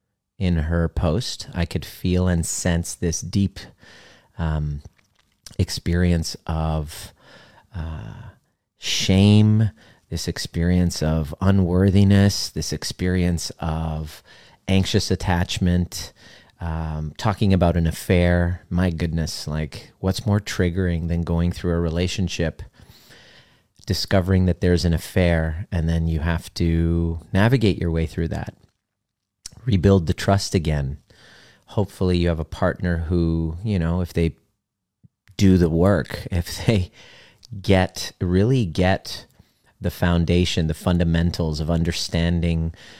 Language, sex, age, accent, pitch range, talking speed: English, male, 30-49, American, 85-100 Hz, 115 wpm